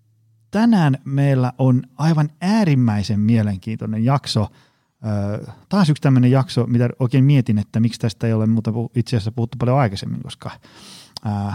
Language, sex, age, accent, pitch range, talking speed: Finnish, male, 30-49, native, 105-125 Hz, 150 wpm